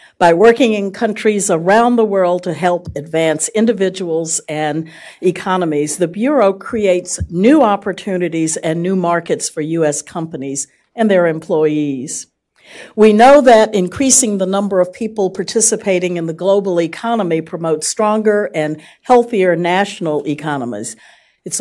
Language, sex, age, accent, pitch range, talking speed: English, female, 50-69, American, 155-210 Hz, 130 wpm